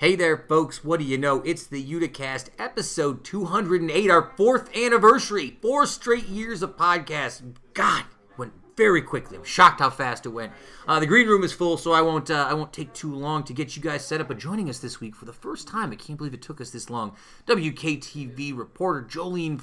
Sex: male